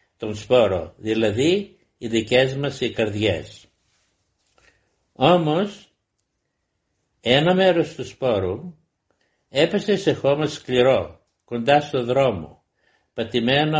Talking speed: 90 wpm